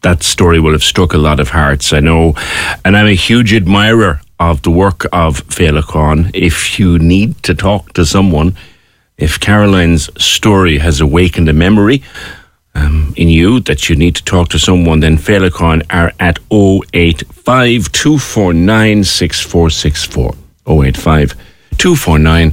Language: English